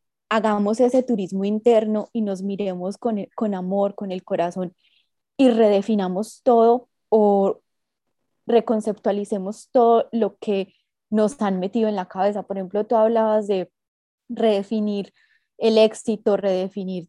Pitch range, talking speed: 195-225 Hz, 130 wpm